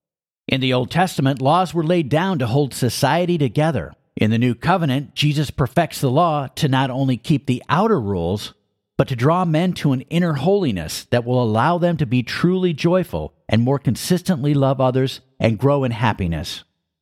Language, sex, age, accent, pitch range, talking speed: English, male, 50-69, American, 115-165 Hz, 185 wpm